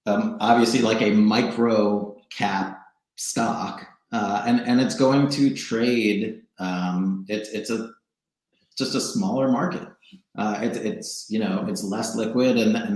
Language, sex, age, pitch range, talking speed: English, male, 30-49, 100-145 Hz, 150 wpm